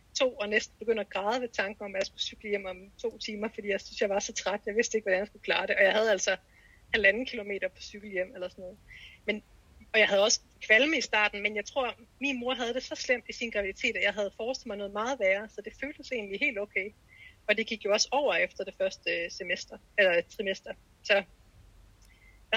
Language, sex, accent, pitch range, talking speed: Danish, female, native, 200-240 Hz, 245 wpm